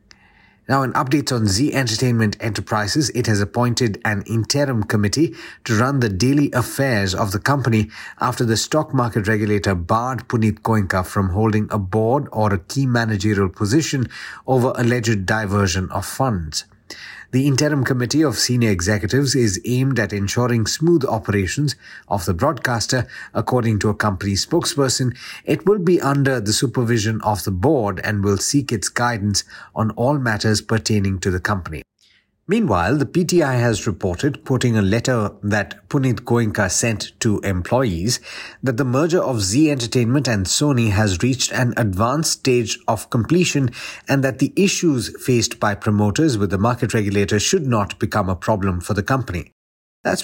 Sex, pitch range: male, 105-130 Hz